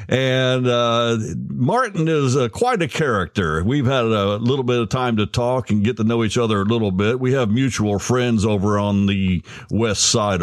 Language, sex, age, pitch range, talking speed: English, male, 50-69, 105-140 Hz, 200 wpm